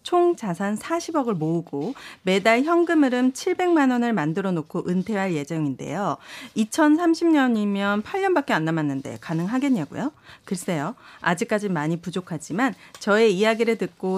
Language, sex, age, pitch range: Korean, female, 40-59, 175-275 Hz